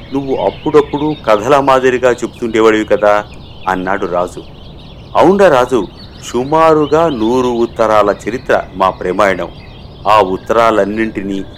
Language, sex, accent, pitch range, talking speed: Telugu, male, native, 100-135 Hz, 90 wpm